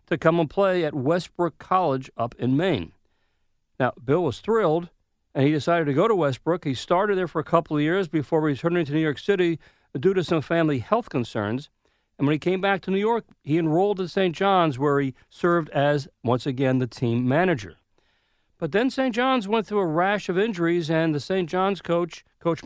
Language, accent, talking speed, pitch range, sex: English, American, 210 wpm, 140-185 Hz, male